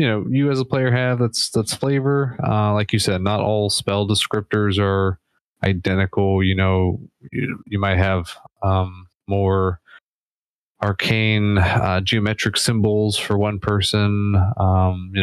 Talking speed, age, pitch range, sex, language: 145 wpm, 20-39, 95-110 Hz, male, English